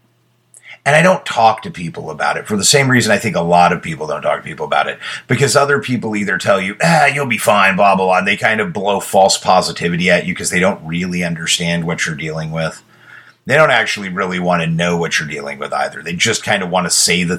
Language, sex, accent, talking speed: English, male, American, 260 wpm